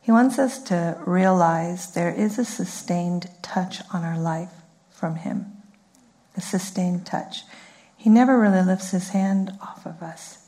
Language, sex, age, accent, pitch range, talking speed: English, female, 50-69, American, 185-210 Hz, 155 wpm